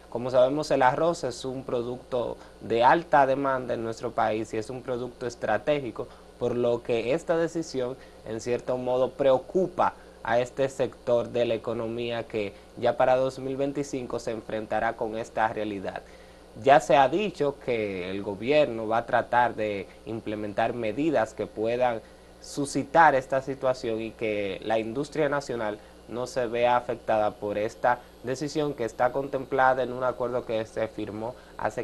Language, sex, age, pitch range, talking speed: Spanish, male, 20-39, 110-135 Hz, 155 wpm